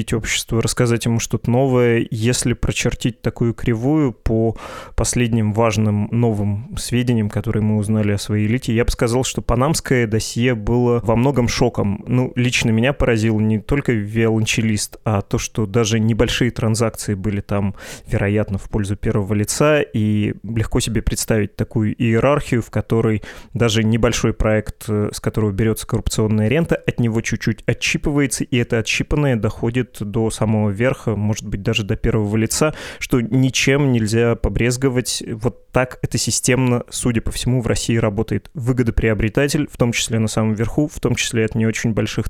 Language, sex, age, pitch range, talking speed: Russian, male, 20-39, 110-125 Hz, 155 wpm